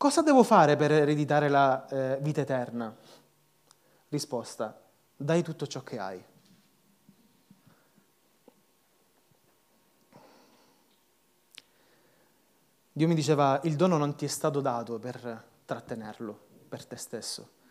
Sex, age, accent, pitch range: male, 30-49, native, 130-175 Hz